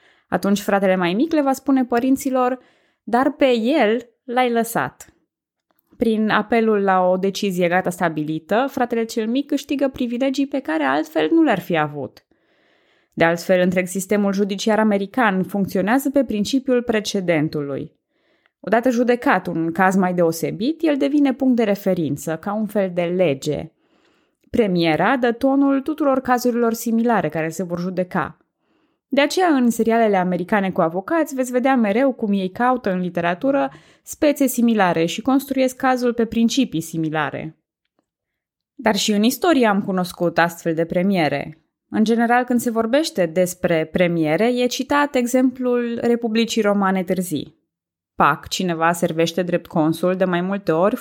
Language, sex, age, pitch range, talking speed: Romanian, female, 20-39, 180-255 Hz, 145 wpm